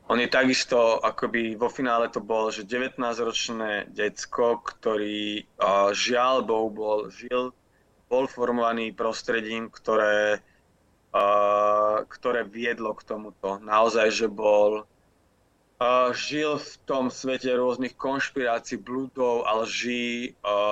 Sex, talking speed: male, 115 wpm